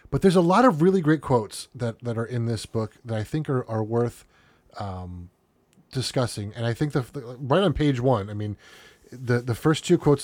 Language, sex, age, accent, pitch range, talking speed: English, male, 30-49, American, 105-130 Hz, 225 wpm